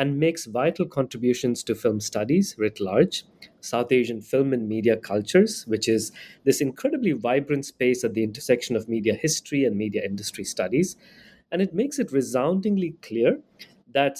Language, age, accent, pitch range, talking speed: English, 30-49, Indian, 115-145 Hz, 160 wpm